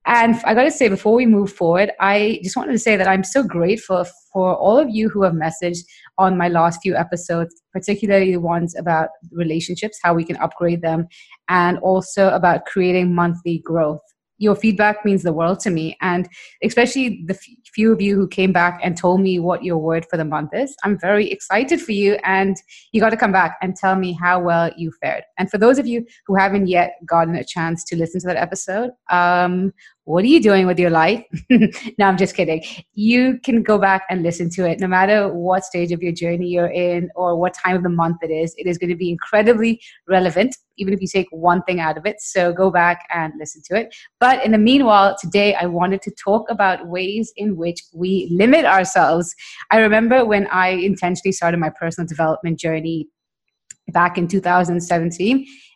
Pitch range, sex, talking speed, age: 175-205 Hz, female, 205 wpm, 20-39